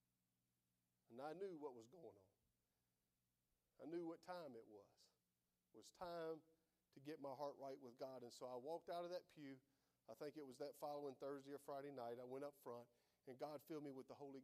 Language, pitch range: English, 120-170 Hz